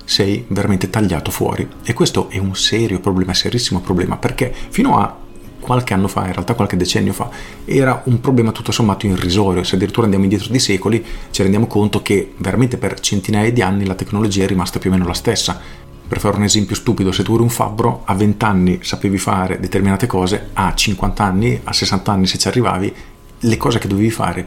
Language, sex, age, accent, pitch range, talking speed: Italian, male, 40-59, native, 95-120 Hz, 205 wpm